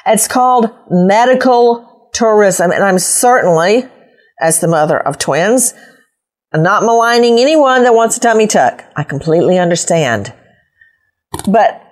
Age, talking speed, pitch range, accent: 50-69, 120 wpm, 195-260 Hz, American